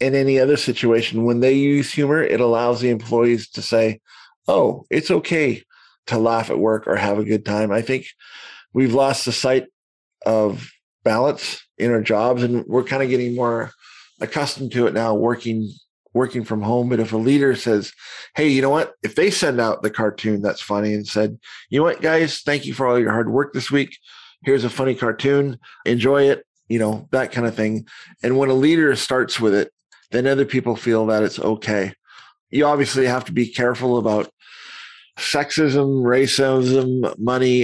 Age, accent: 40-59, American